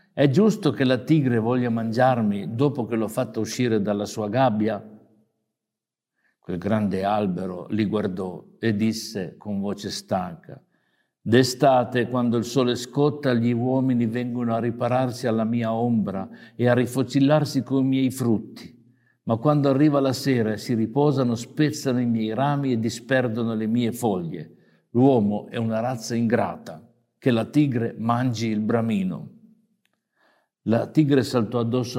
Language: Italian